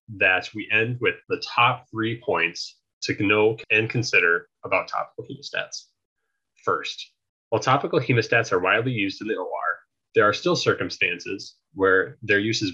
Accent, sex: American, male